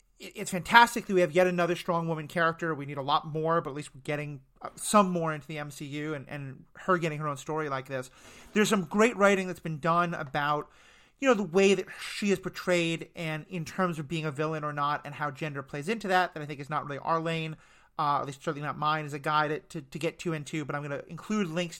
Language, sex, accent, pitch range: English, male, American, 150-195 Hz